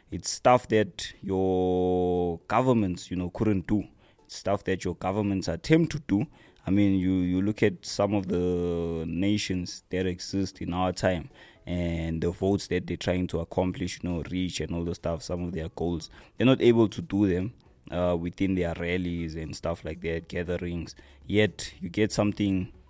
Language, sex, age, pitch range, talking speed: English, male, 20-39, 85-100 Hz, 185 wpm